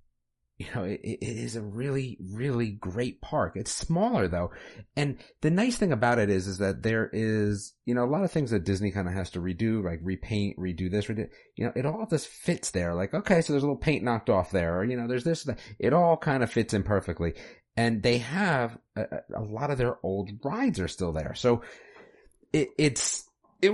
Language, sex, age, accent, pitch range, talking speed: English, male, 30-49, American, 90-120 Hz, 220 wpm